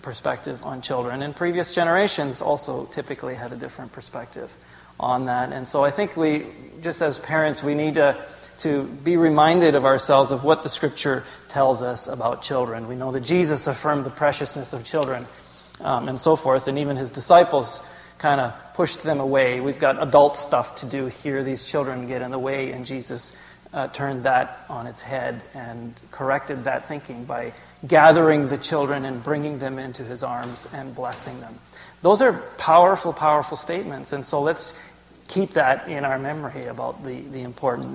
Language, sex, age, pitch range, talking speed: English, male, 30-49, 125-155 Hz, 180 wpm